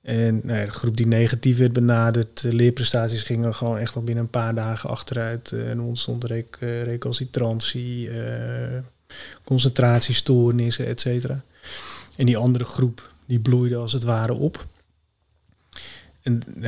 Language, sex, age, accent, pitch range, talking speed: Dutch, male, 30-49, Dutch, 115-125 Hz, 140 wpm